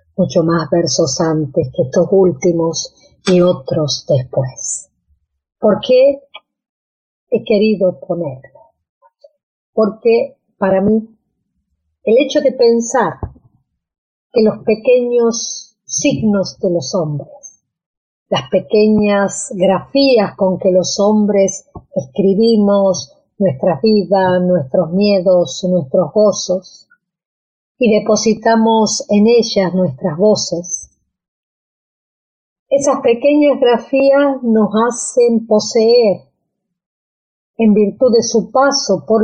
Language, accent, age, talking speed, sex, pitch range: Spanish, American, 40-59, 95 wpm, female, 185-235 Hz